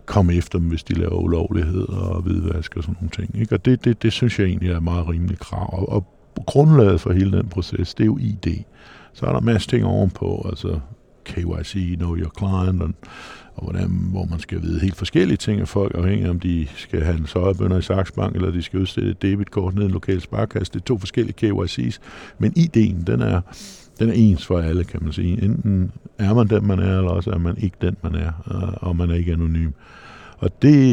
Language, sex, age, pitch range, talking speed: Danish, male, 60-79, 85-105 Hz, 225 wpm